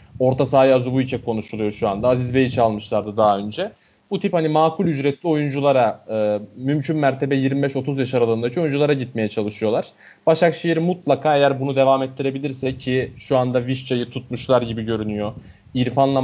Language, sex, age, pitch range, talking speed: Turkish, male, 30-49, 120-145 Hz, 150 wpm